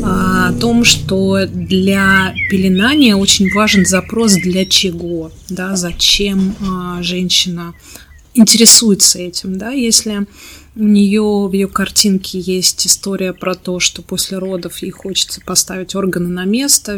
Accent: native